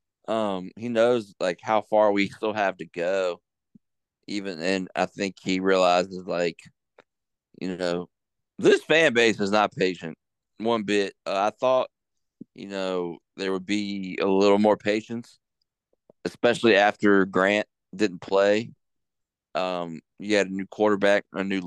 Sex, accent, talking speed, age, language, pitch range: male, American, 145 wpm, 40-59, English, 95-110 Hz